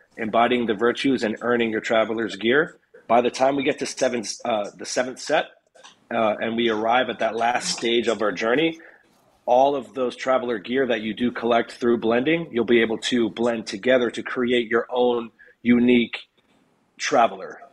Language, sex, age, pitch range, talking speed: English, male, 30-49, 110-125 Hz, 180 wpm